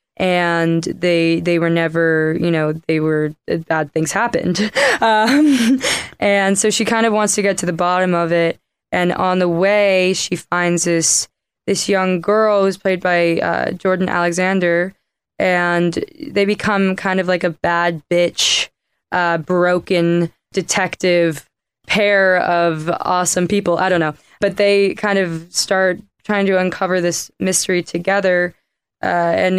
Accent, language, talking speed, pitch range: American, English, 150 wpm, 170-195 Hz